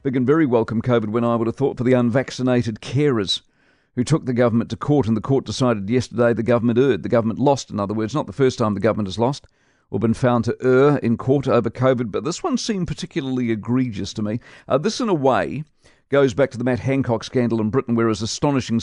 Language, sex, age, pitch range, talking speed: English, male, 50-69, 110-130 Hz, 240 wpm